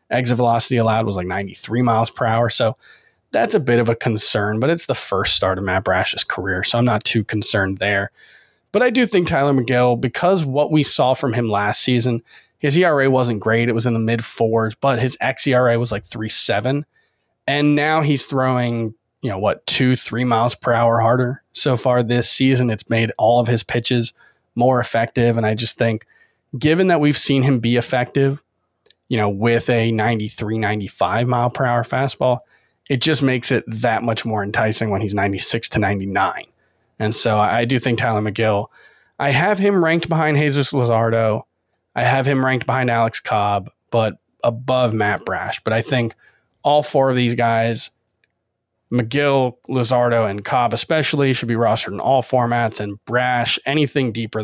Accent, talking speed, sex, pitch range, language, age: American, 185 wpm, male, 110-130 Hz, English, 20-39